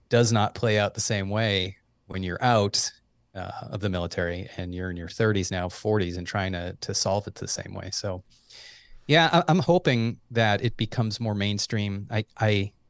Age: 30-49